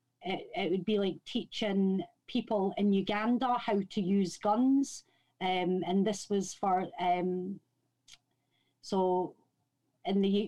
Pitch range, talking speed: 180-225 Hz, 125 wpm